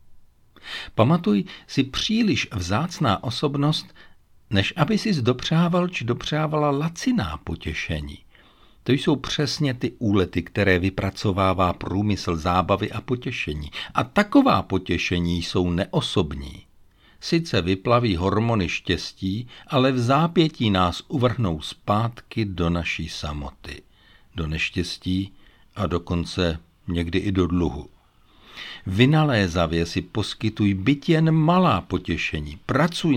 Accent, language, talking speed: native, Czech, 105 wpm